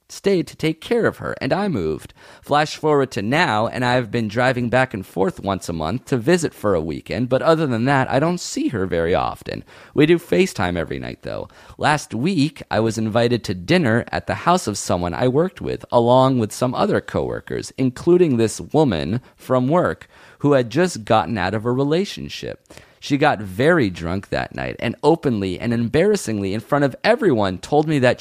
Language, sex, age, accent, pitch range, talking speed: English, male, 30-49, American, 105-155 Hz, 200 wpm